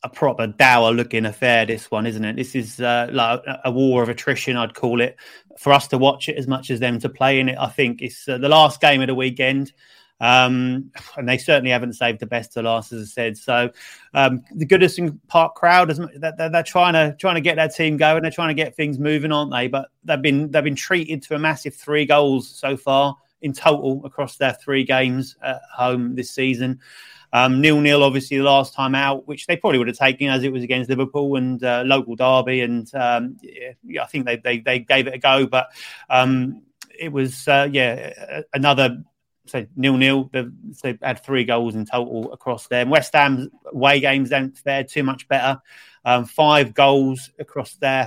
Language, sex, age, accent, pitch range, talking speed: English, male, 30-49, British, 125-145 Hz, 210 wpm